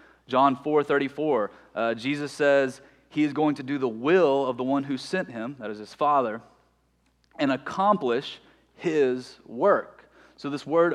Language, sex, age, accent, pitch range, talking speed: English, male, 30-49, American, 125-155 Hz, 165 wpm